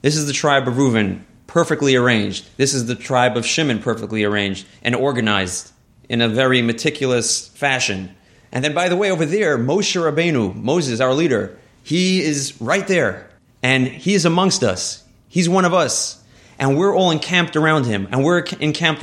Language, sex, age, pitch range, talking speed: English, male, 30-49, 115-160 Hz, 180 wpm